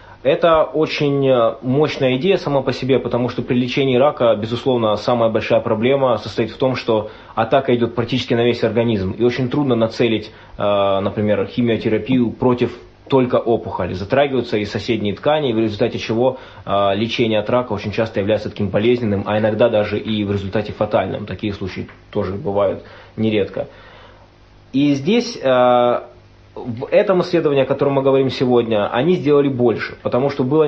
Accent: native